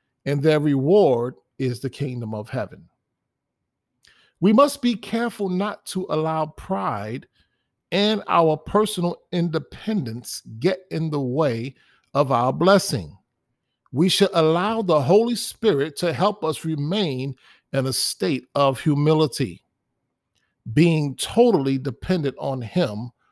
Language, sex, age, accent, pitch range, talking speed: English, male, 50-69, American, 130-195 Hz, 120 wpm